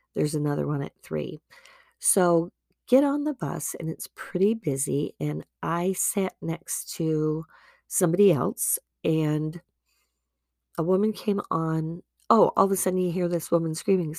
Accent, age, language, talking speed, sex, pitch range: American, 40-59, English, 150 wpm, female, 150-190 Hz